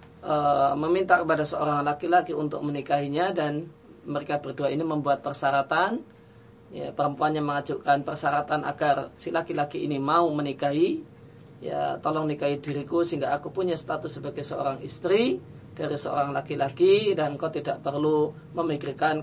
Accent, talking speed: native, 130 wpm